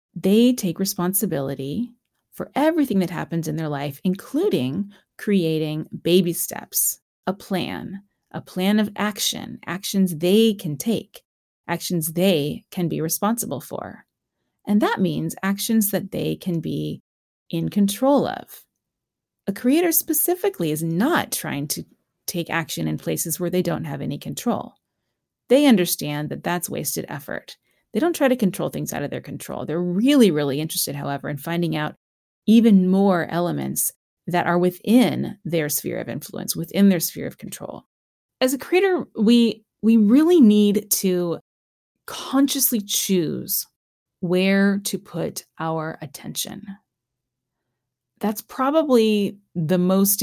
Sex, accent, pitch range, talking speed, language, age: female, American, 160-215 Hz, 140 wpm, English, 30-49